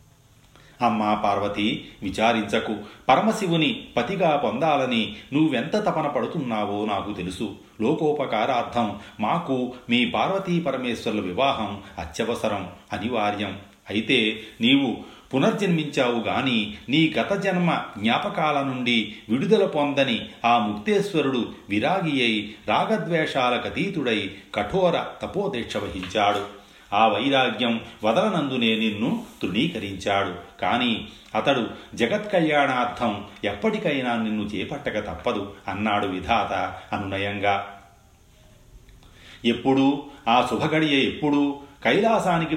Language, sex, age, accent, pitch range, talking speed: Telugu, male, 40-59, native, 105-145 Hz, 80 wpm